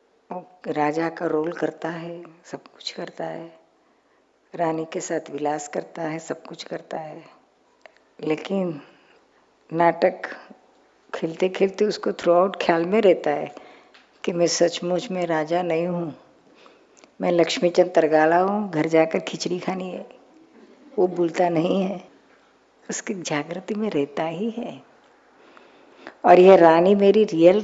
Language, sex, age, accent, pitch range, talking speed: Gujarati, female, 50-69, native, 160-190 Hz, 100 wpm